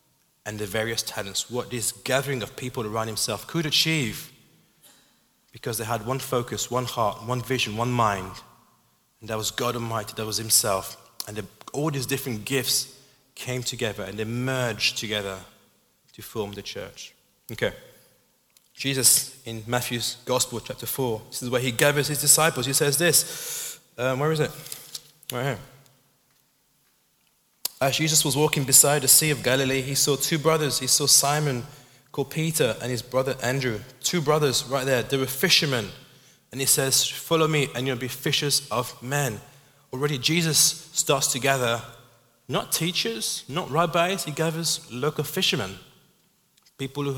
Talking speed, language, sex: 160 wpm, English, male